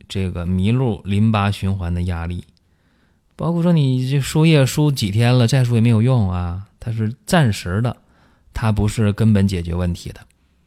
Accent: native